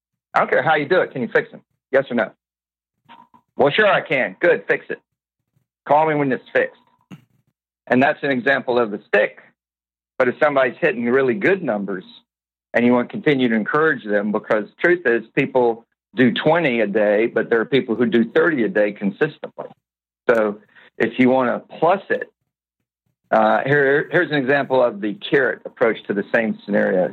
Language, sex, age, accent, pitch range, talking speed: English, male, 50-69, American, 100-130 Hz, 190 wpm